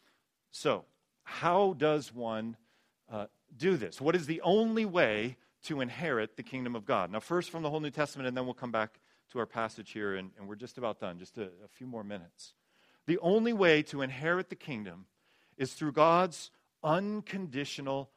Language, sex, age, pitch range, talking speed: English, male, 40-59, 130-170 Hz, 190 wpm